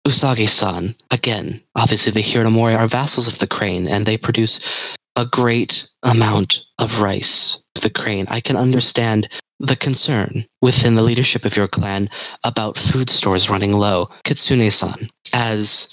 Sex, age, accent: male, 30-49, American